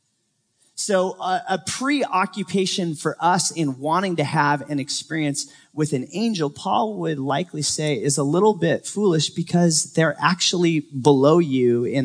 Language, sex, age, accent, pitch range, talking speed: English, male, 30-49, American, 145-200 Hz, 150 wpm